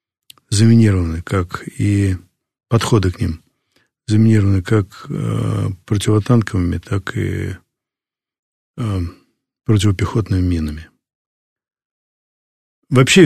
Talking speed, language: 70 wpm, Russian